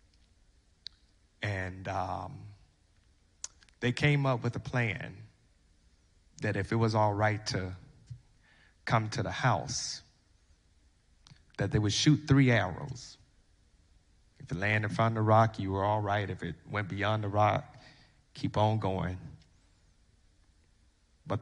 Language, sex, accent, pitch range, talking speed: English, male, American, 80-115 Hz, 130 wpm